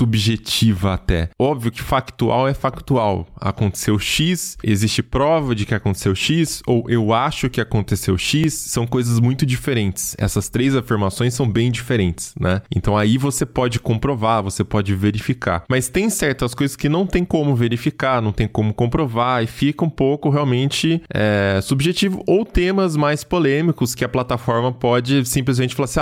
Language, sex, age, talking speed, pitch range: Portuguese, male, 20-39, 160 wpm, 110-145 Hz